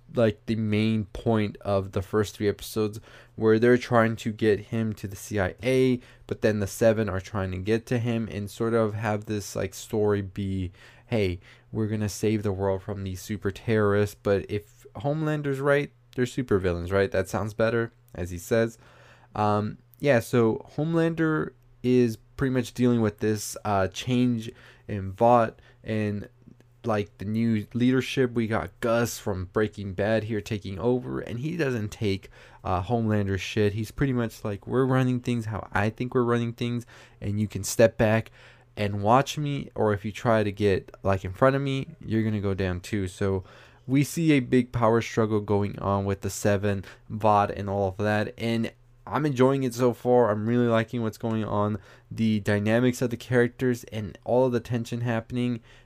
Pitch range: 105-120 Hz